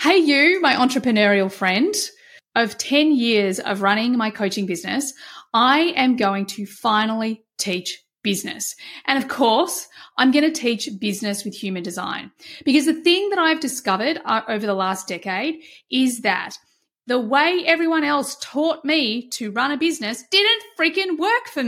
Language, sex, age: English, female, 30-49